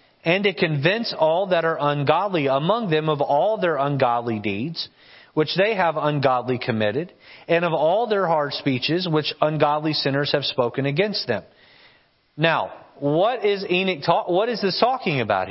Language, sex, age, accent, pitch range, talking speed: English, male, 40-59, American, 135-175 Hz, 165 wpm